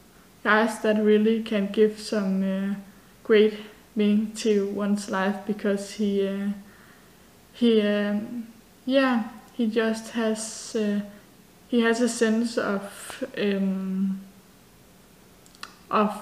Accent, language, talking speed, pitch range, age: Danish, English, 105 wpm, 205-235 Hz, 20-39